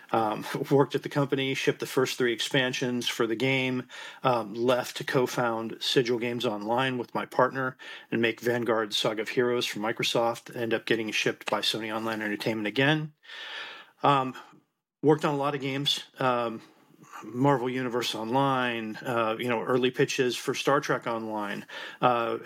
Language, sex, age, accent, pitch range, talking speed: English, male, 40-59, American, 115-130 Hz, 165 wpm